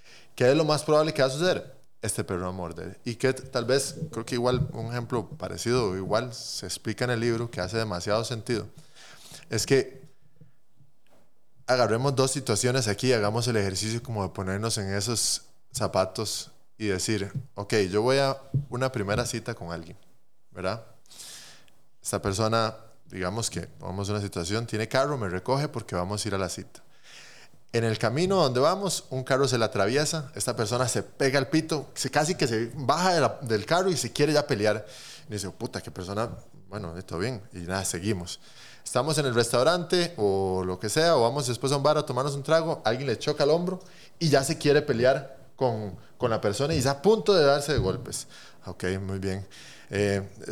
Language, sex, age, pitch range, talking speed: Spanish, male, 20-39, 100-140 Hz, 200 wpm